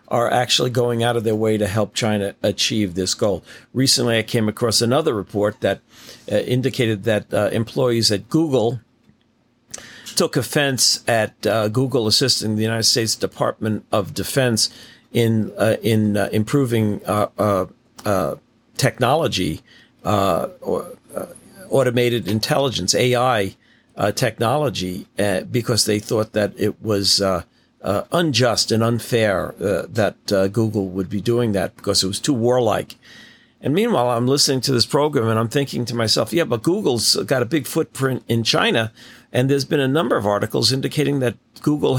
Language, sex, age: English, male, 50-69